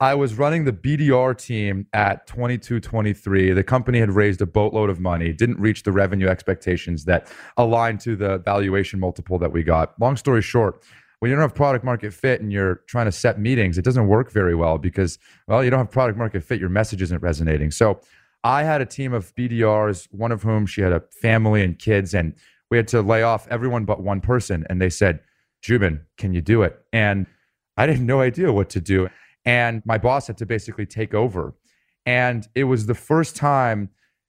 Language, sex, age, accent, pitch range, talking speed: English, male, 30-49, American, 95-125 Hz, 205 wpm